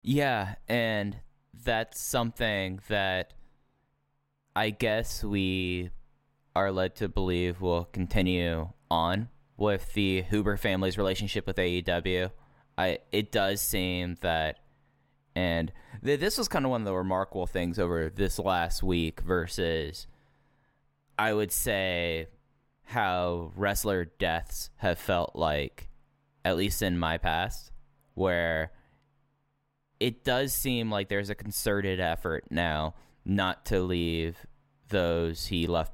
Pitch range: 85-110 Hz